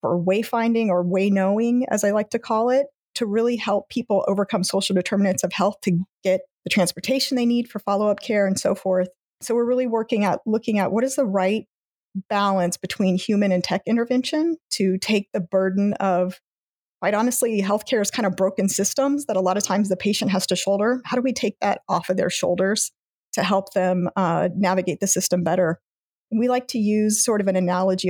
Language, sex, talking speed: English, female, 210 wpm